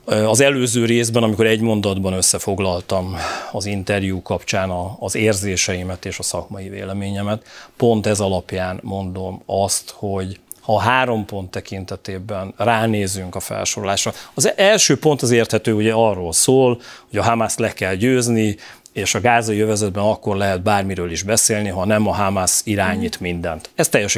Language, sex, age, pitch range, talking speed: Hungarian, male, 30-49, 95-115 Hz, 150 wpm